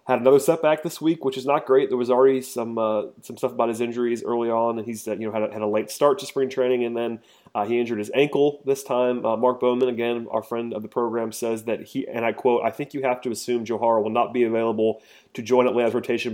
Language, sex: English, male